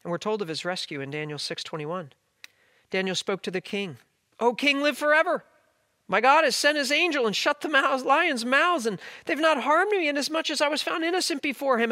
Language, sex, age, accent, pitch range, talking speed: English, male, 40-59, American, 145-240 Hz, 220 wpm